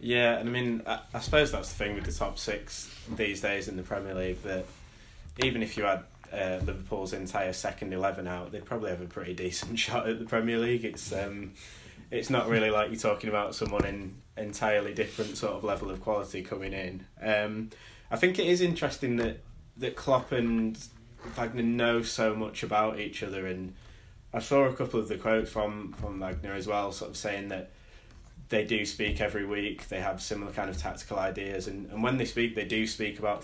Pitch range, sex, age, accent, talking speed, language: 95-115 Hz, male, 20-39, British, 210 wpm, English